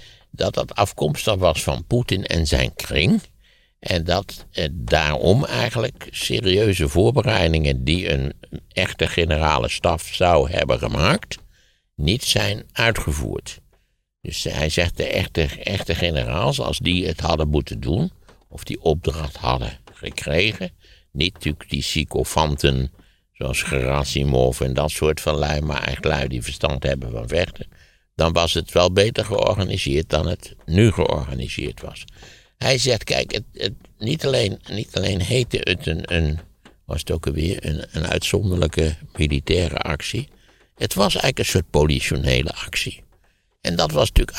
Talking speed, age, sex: 145 wpm, 60-79, male